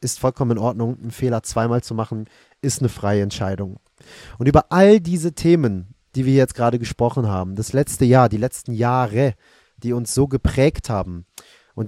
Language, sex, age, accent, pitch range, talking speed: German, male, 30-49, German, 105-135 Hz, 180 wpm